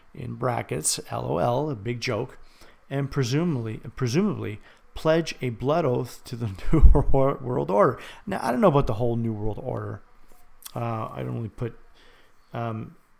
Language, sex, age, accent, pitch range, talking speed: English, male, 40-59, American, 115-135 Hz, 155 wpm